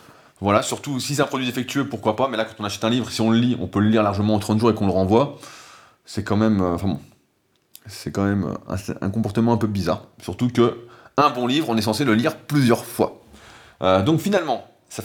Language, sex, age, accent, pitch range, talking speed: French, male, 20-39, French, 105-140 Hz, 240 wpm